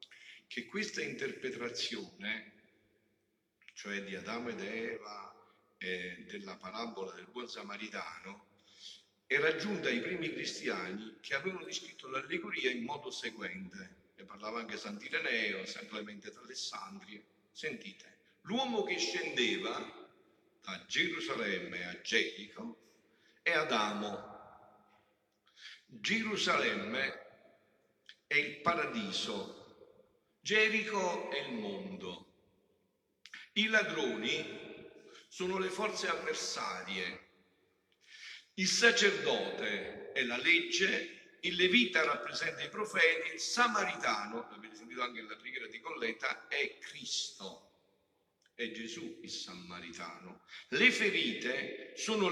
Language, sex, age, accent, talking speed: Italian, male, 50-69, native, 95 wpm